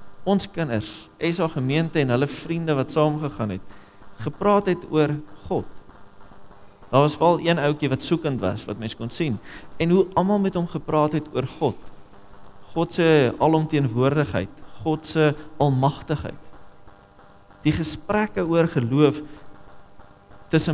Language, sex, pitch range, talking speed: English, male, 100-150 Hz, 125 wpm